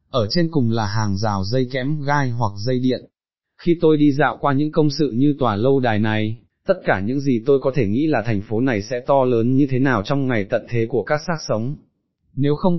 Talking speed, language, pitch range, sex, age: 250 wpm, Vietnamese, 110-145 Hz, male, 20-39